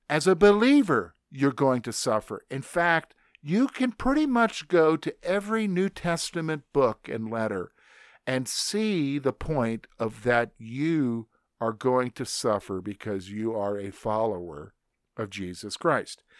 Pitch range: 115-155 Hz